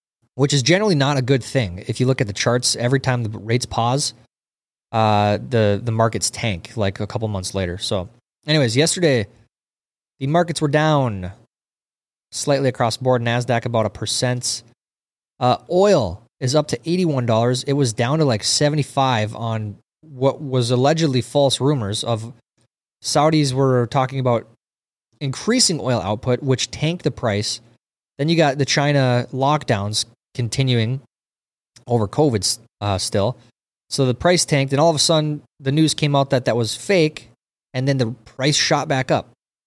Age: 20-39